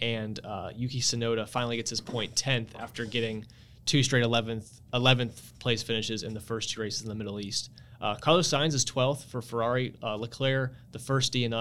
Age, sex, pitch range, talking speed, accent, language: 20-39, male, 115-130 Hz, 190 wpm, American, English